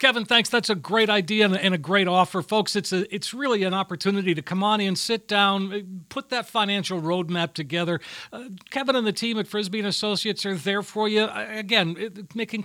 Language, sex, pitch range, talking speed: English, male, 175-215 Hz, 210 wpm